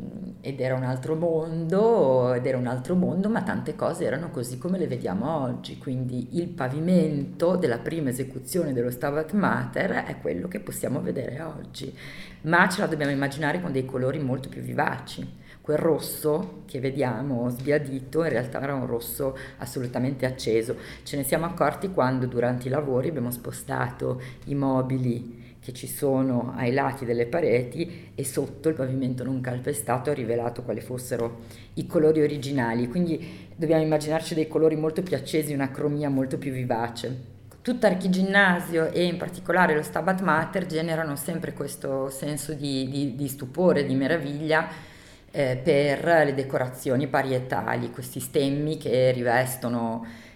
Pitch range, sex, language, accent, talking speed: 125-160 Hz, female, Italian, native, 155 wpm